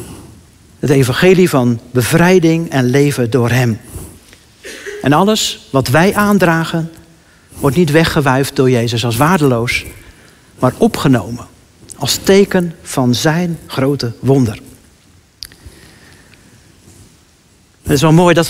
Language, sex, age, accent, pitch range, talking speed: Dutch, male, 60-79, Dutch, 120-170 Hz, 105 wpm